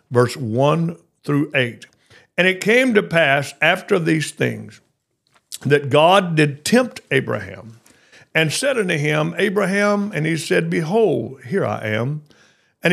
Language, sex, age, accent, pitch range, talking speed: English, male, 60-79, American, 135-195 Hz, 140 wpm